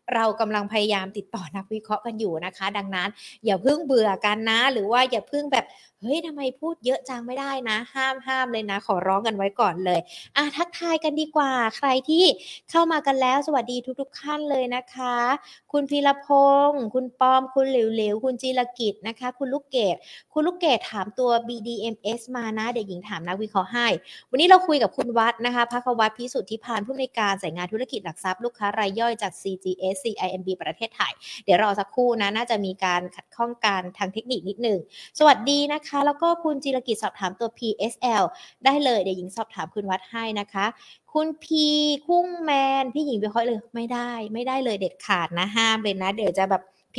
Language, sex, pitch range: Thai, female, 200-265 Hz